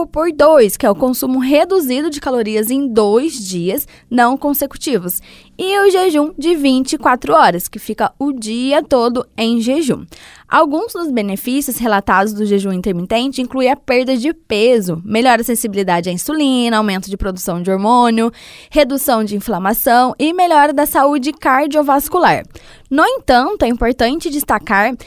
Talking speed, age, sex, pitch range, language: 145 wpm, 10-29, female, 235-305 Hz, Portuguese